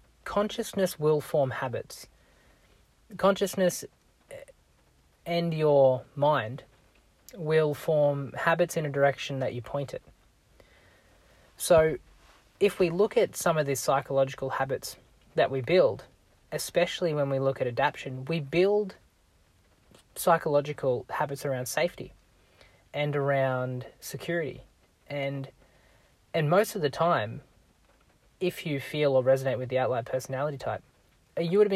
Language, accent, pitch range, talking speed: English, Australian, 130-165 Hz, 125 wpm